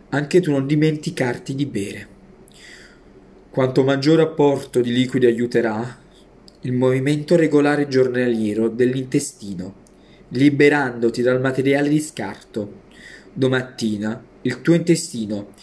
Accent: native